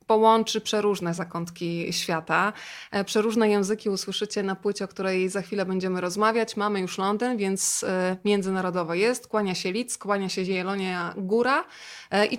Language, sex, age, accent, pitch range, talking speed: Polish, female, 20-39, native, 185-215 Hz, 140 wpm